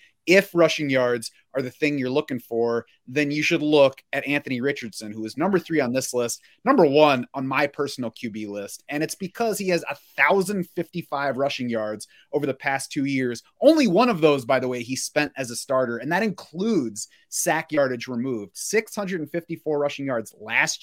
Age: 30-49